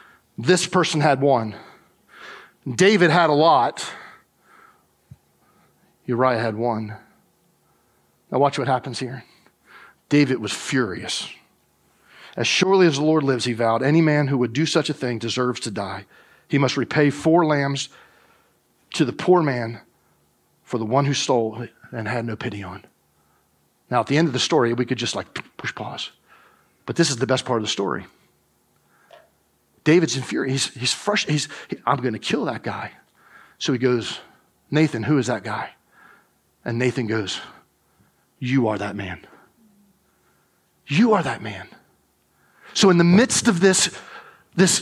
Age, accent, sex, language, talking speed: 40-59, American, male, English, 160 wpm